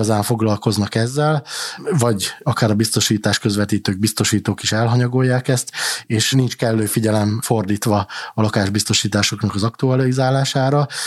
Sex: male